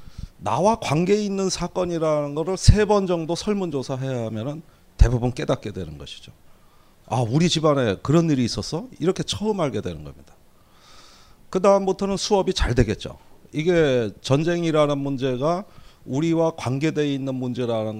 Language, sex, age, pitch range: Korean, male, 30-49, 120-180 Hz